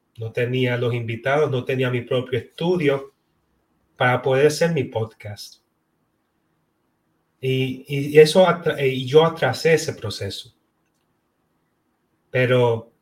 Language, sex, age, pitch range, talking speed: English, male, 30-49, 125-155 Hz, 105 wpm